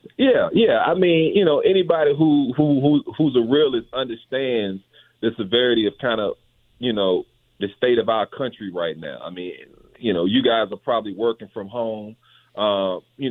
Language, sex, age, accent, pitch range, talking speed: English, male, 40-59, American, 105-130 Hz, 185 wpm